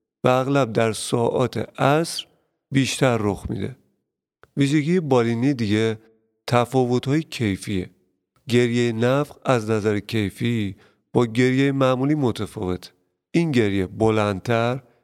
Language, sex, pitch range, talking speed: Persian, male, 105-130 Hz, 100 wpm